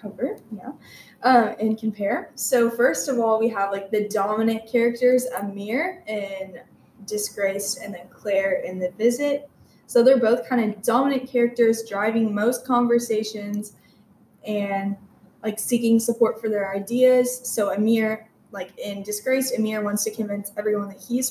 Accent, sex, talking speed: American, female, 150 wpm